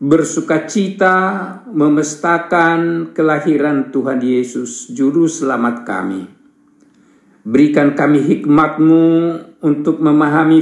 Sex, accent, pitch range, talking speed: male, native, 155-235 Hz, 75 wpm